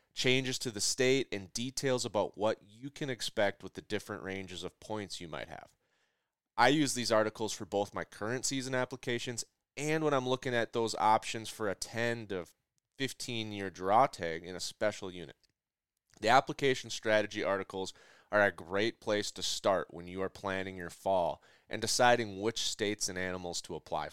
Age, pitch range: 30-49, 100-130 Hz